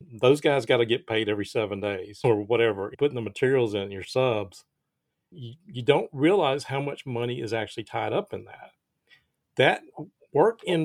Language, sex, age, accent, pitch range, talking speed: English, male, 50-69, American, 120-165 Hz, 185 wpm